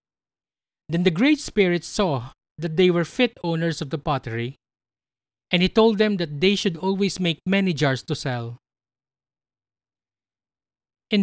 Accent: Filipino